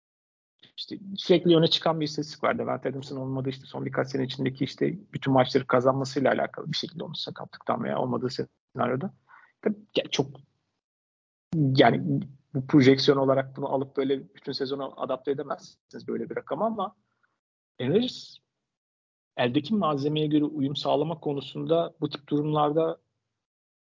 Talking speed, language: 135 wpm, Turkish